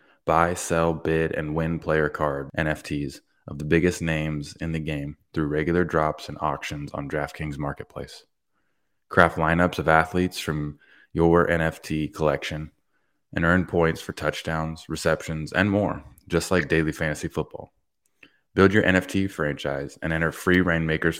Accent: American